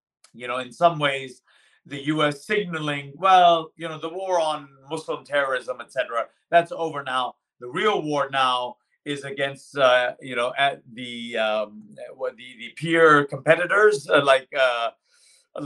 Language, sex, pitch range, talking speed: English, male, 125-170 Hz, 155 wpm